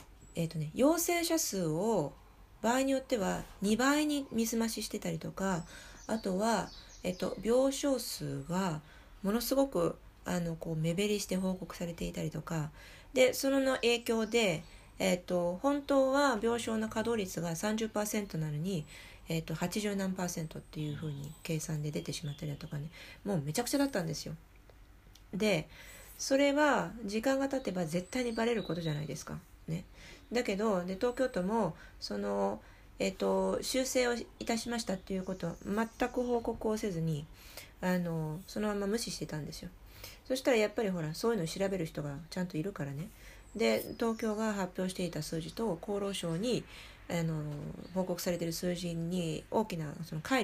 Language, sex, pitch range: Japanese, female, 160-230 Hz